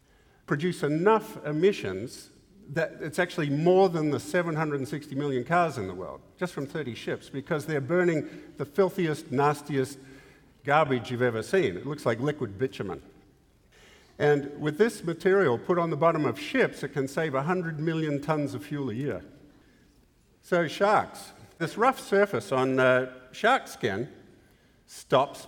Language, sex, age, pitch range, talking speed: English, male, 50-69, 125-165 Hz, 150 wpm